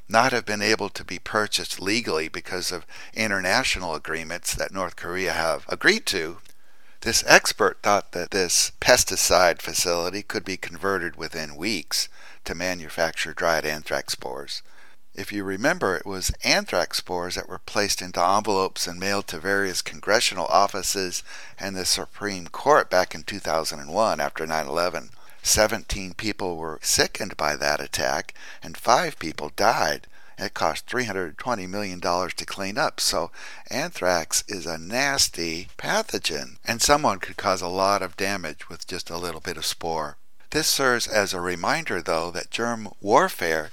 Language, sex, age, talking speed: English, male, 60-79, 150 wpm